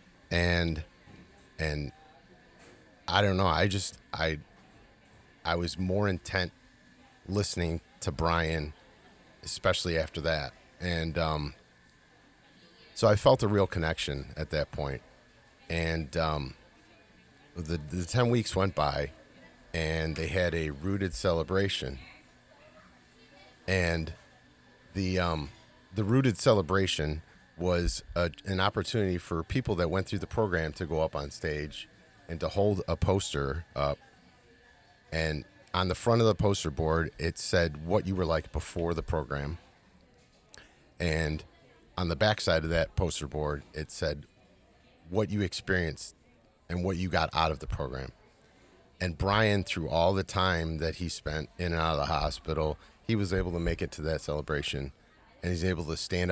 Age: 30-49